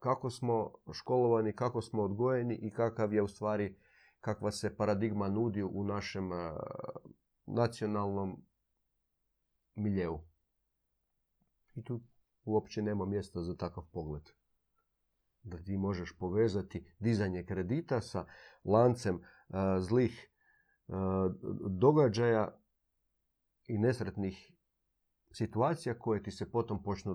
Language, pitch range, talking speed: Croatian, 95-125 Hz, 100 wpm